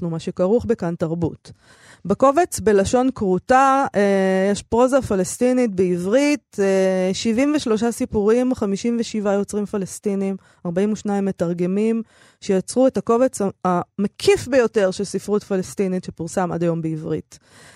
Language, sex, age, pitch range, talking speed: Hebrew, female, 20-39, 180-235 Hz, 100 wpm